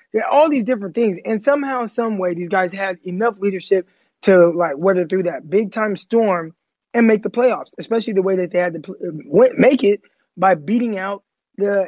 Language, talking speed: English, 190 wpm